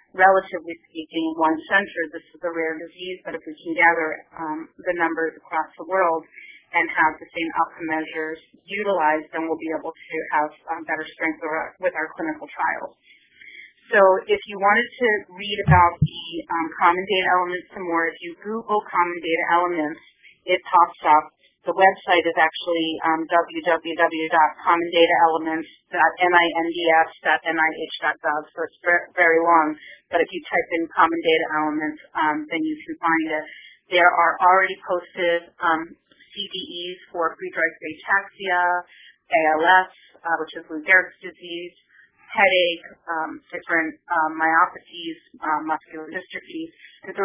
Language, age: English, 30-49